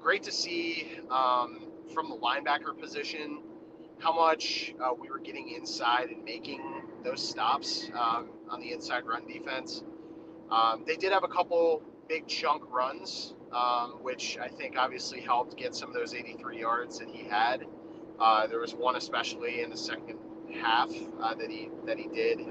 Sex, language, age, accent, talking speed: male, English, 30-49, American, 170 wpm